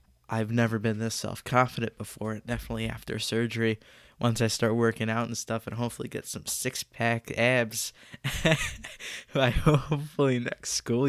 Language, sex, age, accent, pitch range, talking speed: English, male, 20-39, American, 105-115 Hz, 140 wpm